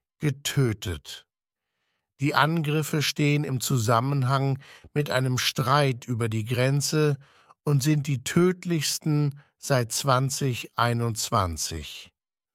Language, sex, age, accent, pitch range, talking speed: English, male, 60-79, German, 120-150 Hz, 85 wpm